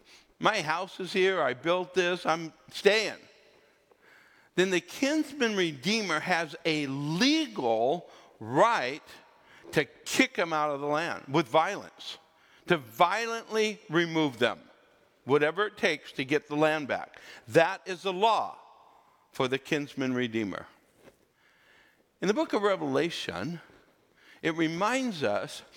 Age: 60-79